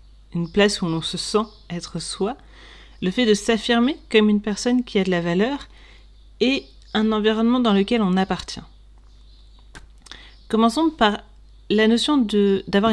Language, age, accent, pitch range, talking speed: French, 40-59, French, 180-220 Hz, 150 wpm